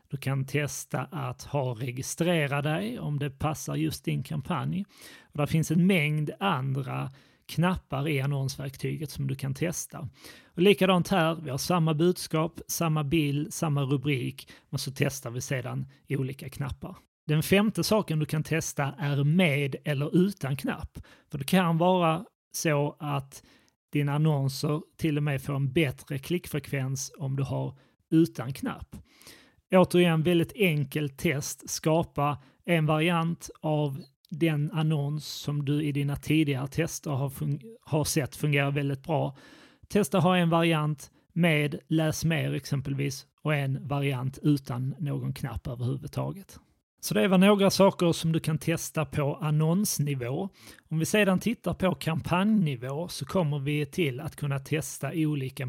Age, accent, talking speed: 30-49, native, 150 wpm